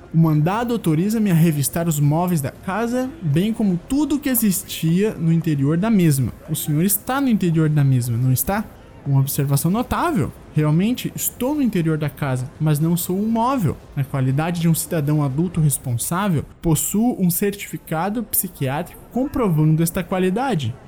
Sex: male